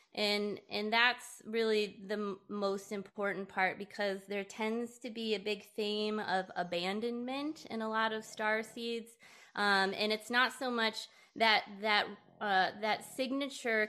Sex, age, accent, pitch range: female, 20-39, American, 185-225 Hz